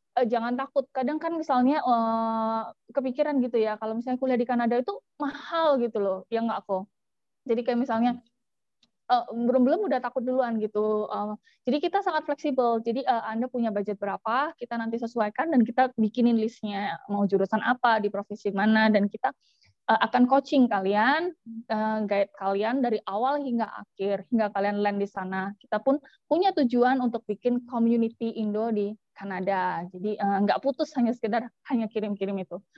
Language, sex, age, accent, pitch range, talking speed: Indonesian, female, 20-39, native, 210-260 Hz, 165 wpm